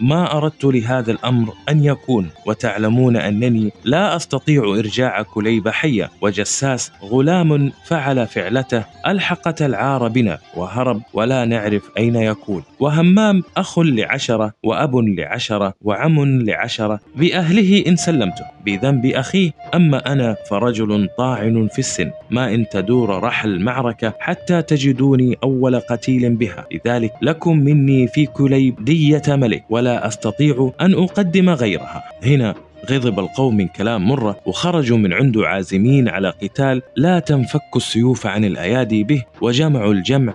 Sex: male